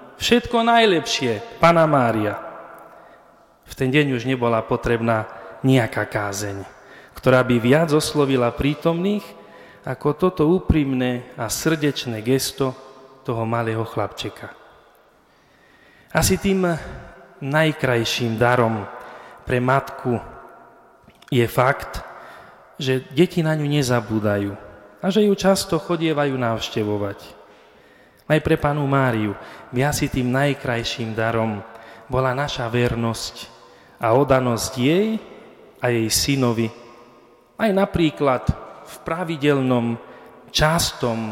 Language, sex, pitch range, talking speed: Slovak, male, 115-150 Hz, 100 wpm